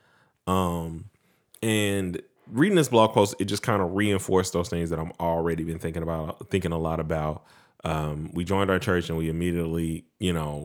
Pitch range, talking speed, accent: 80-100 Hz, 185 wpm, American